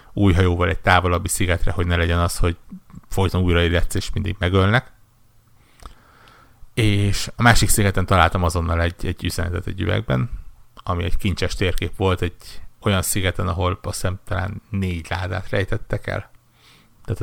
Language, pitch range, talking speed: Hungarian, 90-105 Hz, 145 wpm